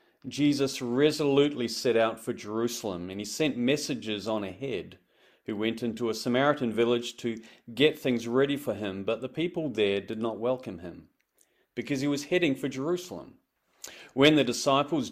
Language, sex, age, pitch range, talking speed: English, male, 40-59, 110-130 Hz, 165 wpm